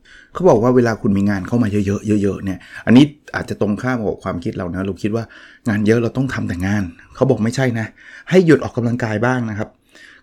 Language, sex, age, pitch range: Thai, male, 20-39, 105-130 Hz